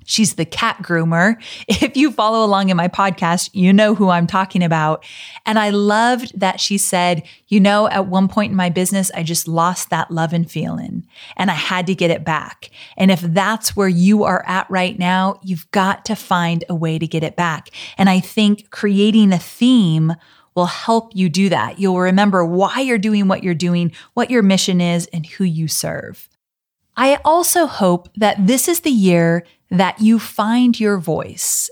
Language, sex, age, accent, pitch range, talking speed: English, female, 30-49, American, 180-235 Hz, 195 wpm